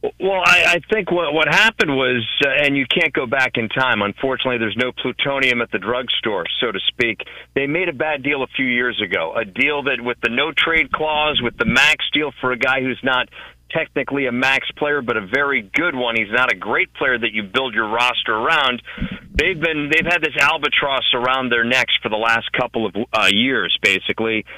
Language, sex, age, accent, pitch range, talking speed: English, male, 40-59, American, 125-150 Hz, 225 wpm